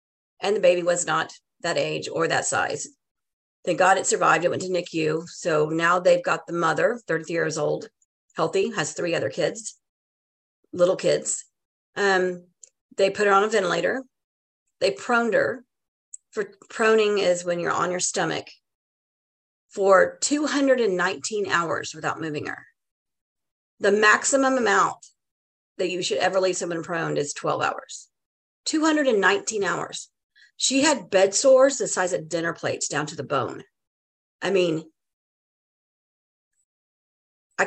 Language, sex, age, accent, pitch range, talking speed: English, female, 40-59, American, 175-225 Hz, 140 wpm